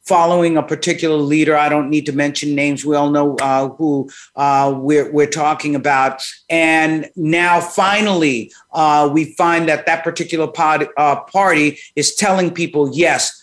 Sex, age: male, 50-69